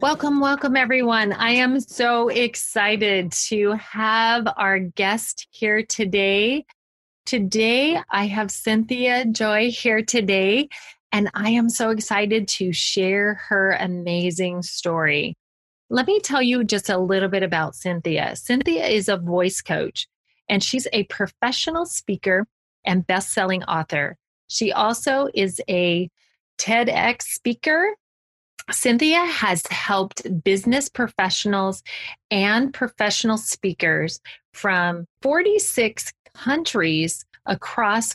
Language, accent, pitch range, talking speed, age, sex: English, American, 185-235 Hz, 110 wpm, 30-49, female